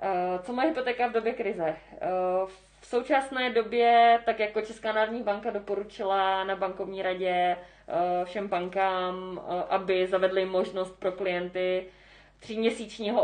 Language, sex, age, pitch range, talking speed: Czech, female, 20-39, 180-210 Hz, 120 wpm